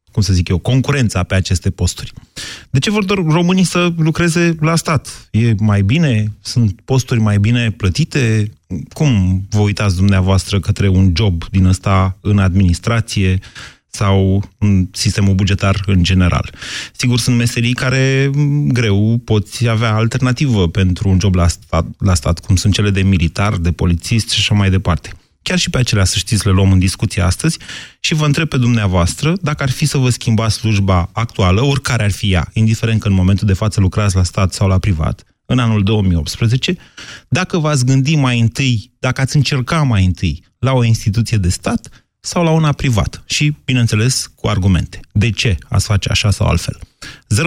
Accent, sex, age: native, male, 30-49